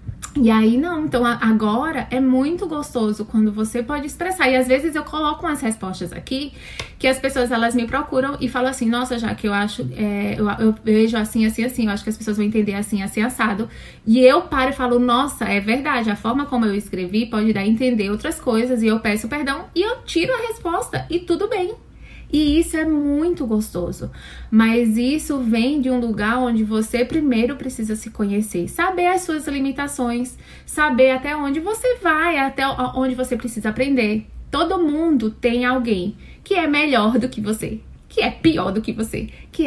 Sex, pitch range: female, 215-270 Hz